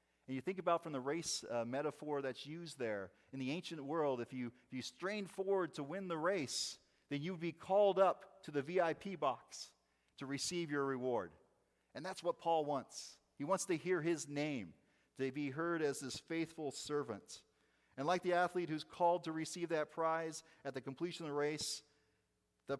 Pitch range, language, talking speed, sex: 115-160 Hz, English, 195 wpm, male